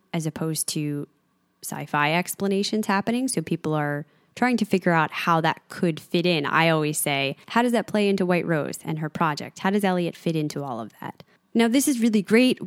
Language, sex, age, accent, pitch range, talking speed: English, female, 10-29, American, 160-200 Hz, 210 wpm